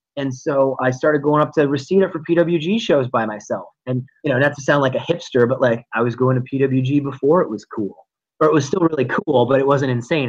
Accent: American